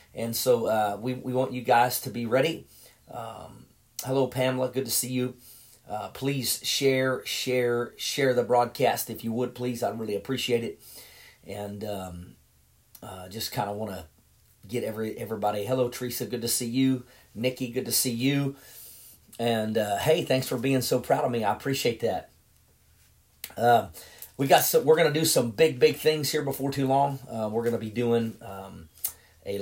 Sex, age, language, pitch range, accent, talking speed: male, 40-59, English, 115-135 Hz, American, 185 wpm